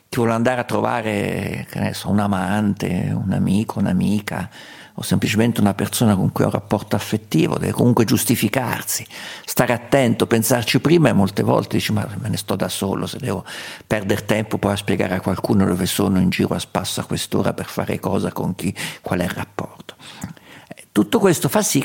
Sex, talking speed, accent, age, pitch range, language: male, 190 wpm, native, 50-69, 95-120 Hz, Italian